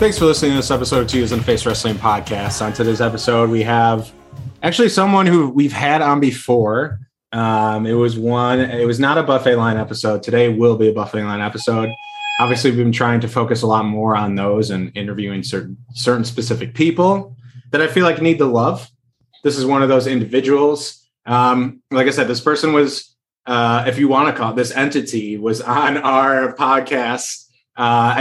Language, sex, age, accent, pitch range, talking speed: English, male, 20-39, American, 115-140 Hz, 195 wpm